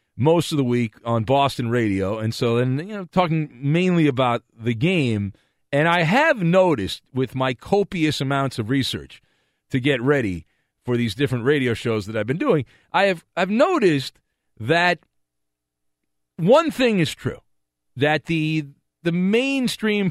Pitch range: 115-170 Hz